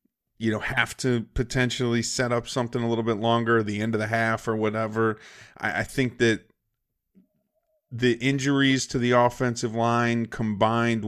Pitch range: 110-130 Hz